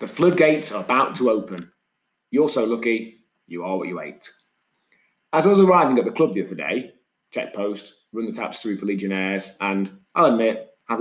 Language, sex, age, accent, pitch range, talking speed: English, male, 30-49, British, 100-150 Hz, 195 wpm